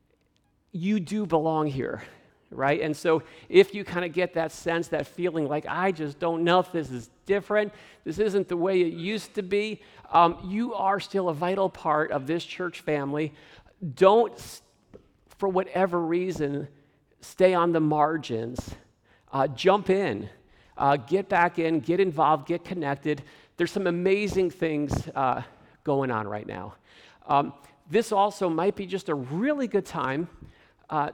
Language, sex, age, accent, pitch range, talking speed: English, male, 50-69, American, 145-185 Hz, 160 wpm